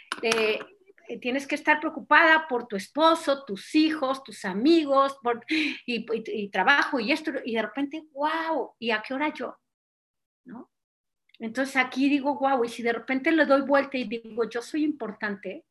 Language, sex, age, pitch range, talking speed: Spanish, female, 40-59, 240-310 Hz, 155 wpm